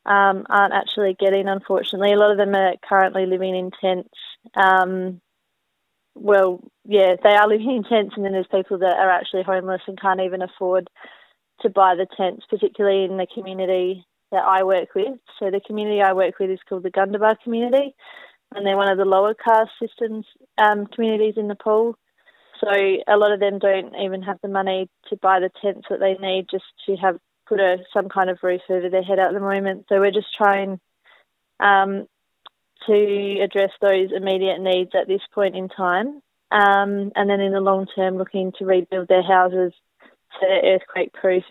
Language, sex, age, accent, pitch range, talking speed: English, female, 20-39, Australian, 190-210 Hz, 185 wpm